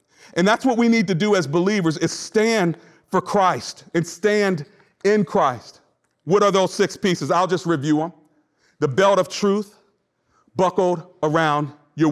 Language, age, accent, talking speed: English, 40-59, American, 165 wpm